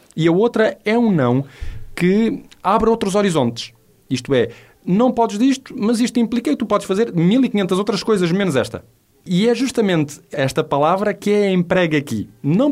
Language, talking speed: Portuguese, 180 wpm